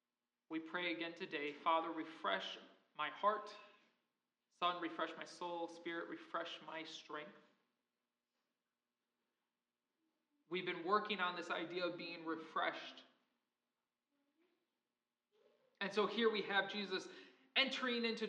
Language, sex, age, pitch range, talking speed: English, male, 20-39, 175-240 Hz, 110 wpm